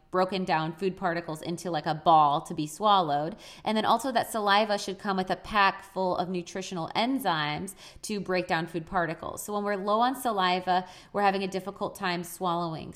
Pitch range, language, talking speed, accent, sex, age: 170-200 Hz, English, 195 wpm, American, female, 20-39